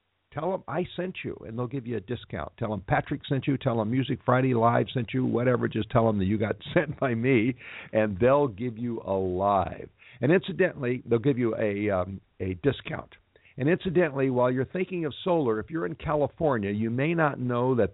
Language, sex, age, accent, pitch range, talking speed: English, male, 60-79, American, 105-135 Hz, 215 wpm